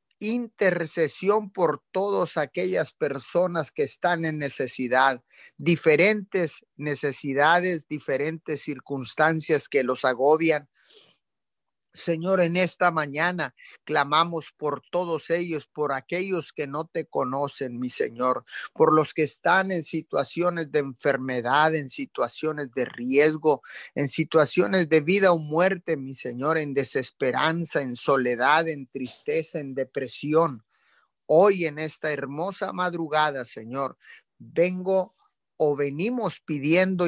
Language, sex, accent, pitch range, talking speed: Spanish, male, Mexican, 145-175 Hz, 115 wpm